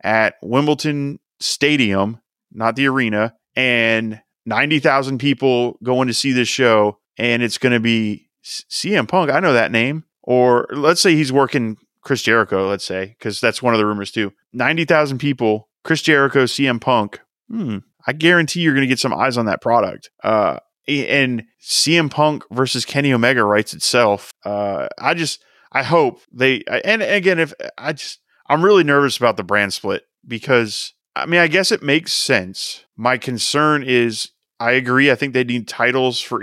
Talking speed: 175 wpm